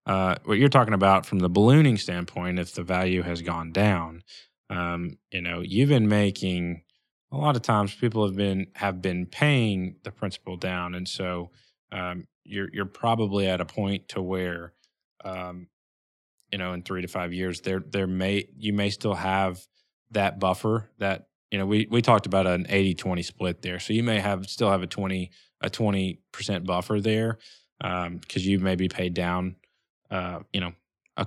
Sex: male